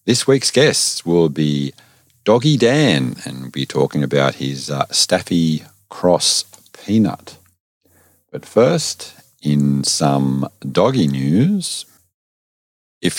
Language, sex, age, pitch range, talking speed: English, male, 40-59, 70-95 Hz, 110 wpm